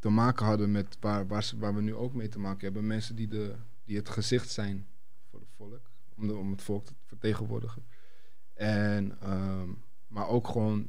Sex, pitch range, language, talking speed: male, 100-120 Hz, Dutch, 200 wpm